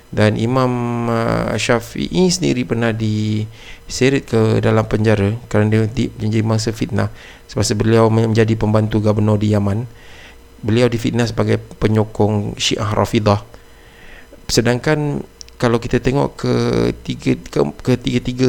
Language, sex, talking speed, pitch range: Malay, male, 105 wpm, 105-120 Hz